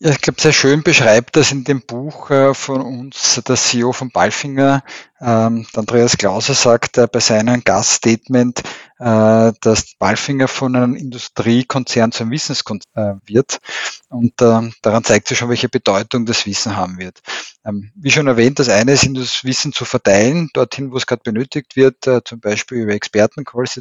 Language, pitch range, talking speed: German, 115-130 Hz, 155 wpm